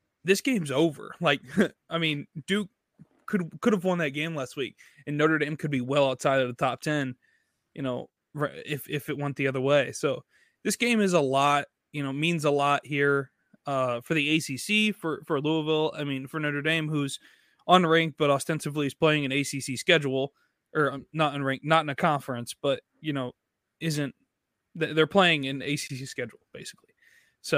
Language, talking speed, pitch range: English, 185 wpm, 135-160 Hz